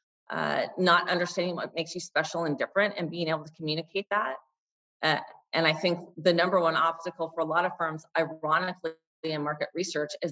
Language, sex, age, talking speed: English, female, 30-49, 190 wpm